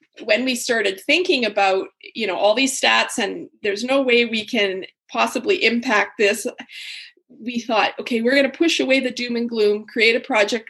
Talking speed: 190 wpm